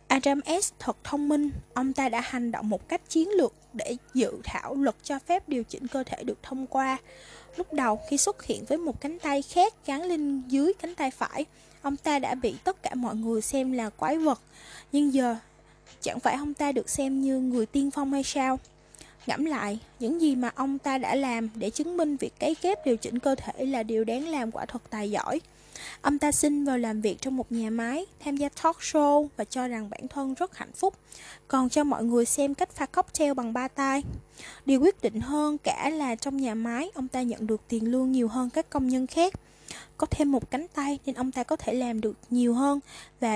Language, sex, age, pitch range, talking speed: Vietnamese, female, 20-39, 240-295 Hz, 230 wpm